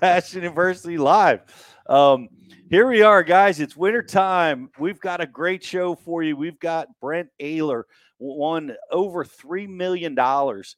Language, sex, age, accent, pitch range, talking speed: English, male, 40-59, American, 115-150 Hz, 145 wpm